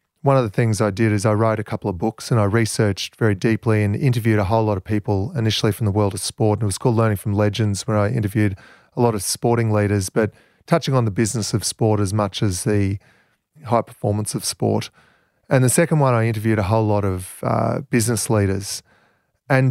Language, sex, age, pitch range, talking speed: English, male, 30-49, 105-125 Hz, 230 wpm